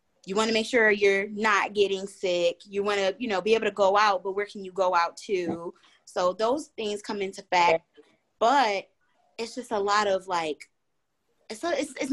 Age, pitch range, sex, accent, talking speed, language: 20-39, 185-230 Hz, female, American, 215 wpm, English